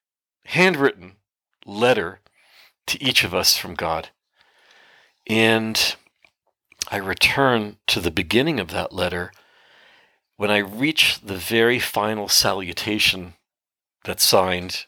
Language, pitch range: English, 100-125 Hz